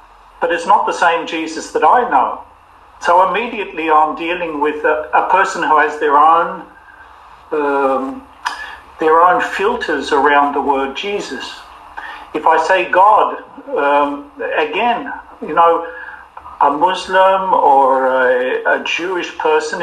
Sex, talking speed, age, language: male, 135 wpm, 50-69, English